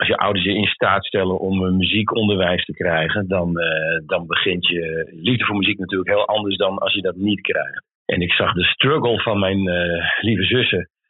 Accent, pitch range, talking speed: Dutch, 90-115 Hz, 210 wpm